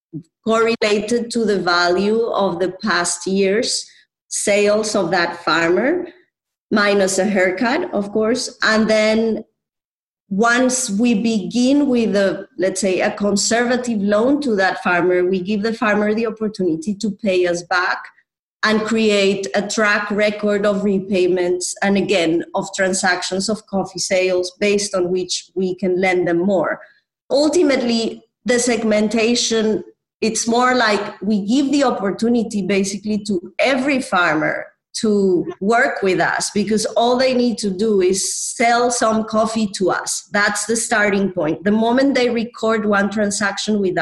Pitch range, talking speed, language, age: 185-225 Hz, 145 wpm, English, 30-49